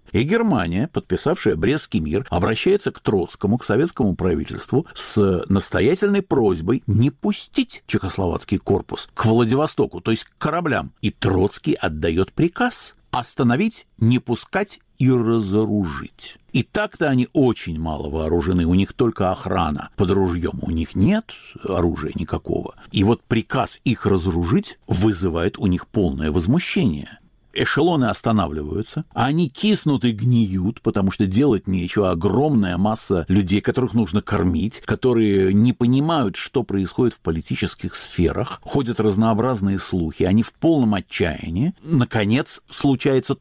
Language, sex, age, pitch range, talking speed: Russian, male, 60-79, 95-135 Hz, 130 wpm